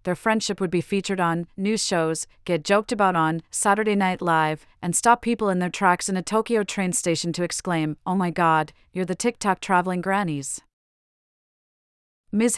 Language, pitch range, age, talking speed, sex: English, 165-200 Hz, 30-49, 175 wpm, female